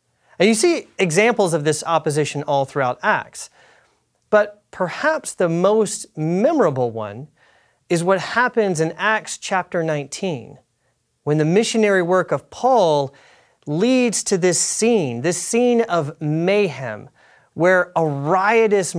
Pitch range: 150-210 Hz